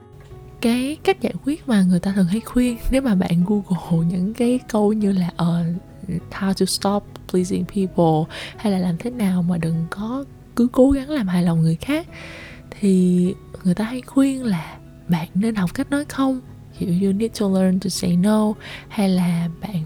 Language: Vietnamese